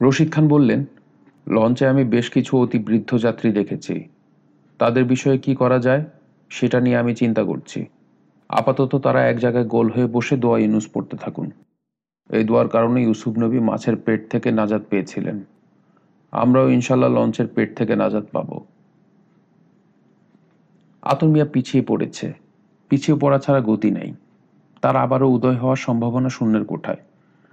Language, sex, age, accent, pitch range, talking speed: Bengali, male, 40-59, native, 115-140 Hz, 140 wpm